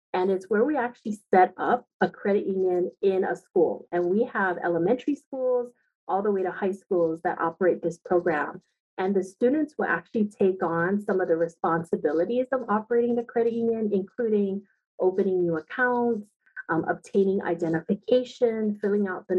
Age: 30-49